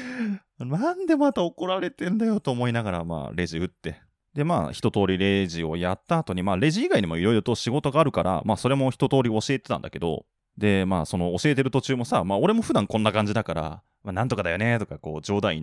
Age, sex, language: 20-39, male, Japanese